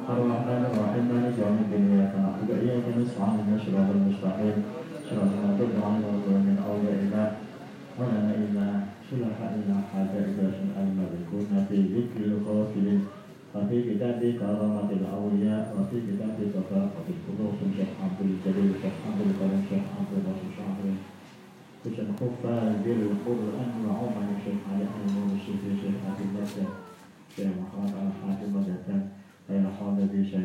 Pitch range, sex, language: 100-120 Hz, male, Indonesian